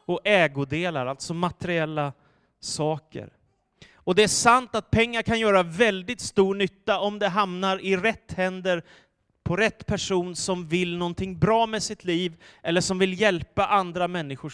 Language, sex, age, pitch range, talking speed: Swedish, male, 30-49, 145-195 Hz, 155 wpm